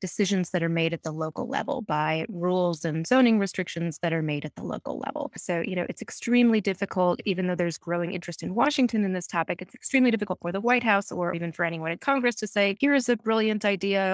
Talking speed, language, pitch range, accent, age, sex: 240 wpm, English, 170-215 Hz, American, 20-39, female